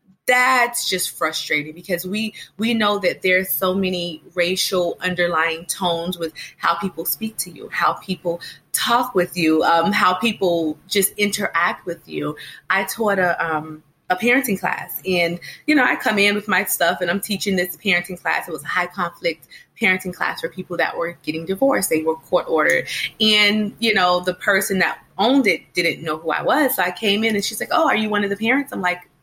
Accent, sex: American, female